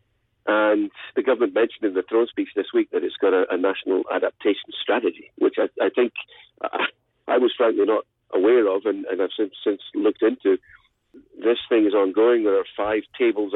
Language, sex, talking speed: English, male, 195 wpm